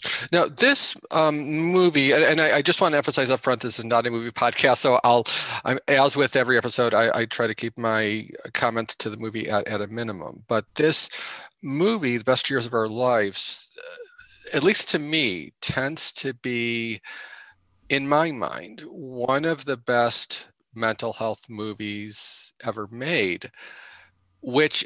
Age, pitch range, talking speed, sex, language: 40-59, 110-135 Hz, 170 wpm, male, English